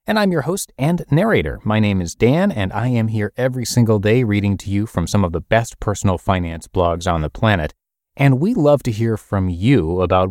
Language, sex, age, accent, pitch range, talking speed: English, male, 30-49, American, 90-135 Hz, 225 wpm